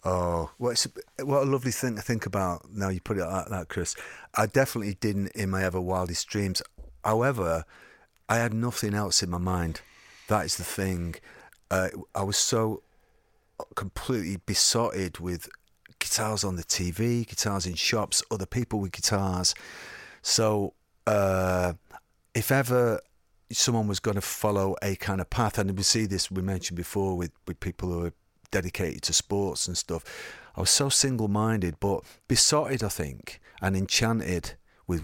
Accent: British